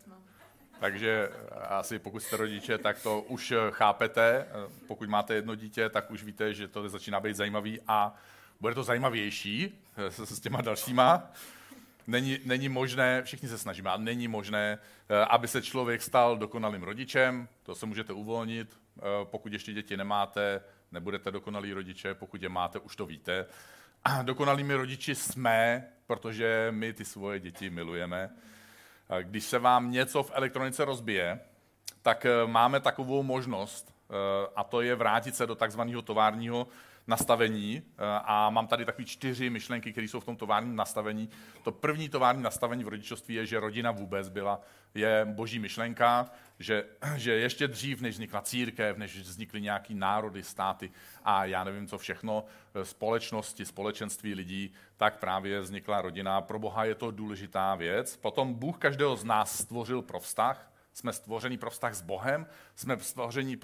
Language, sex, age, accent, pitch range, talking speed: Czech, male, 40-59, native, 105-120 Hz, 150 wpm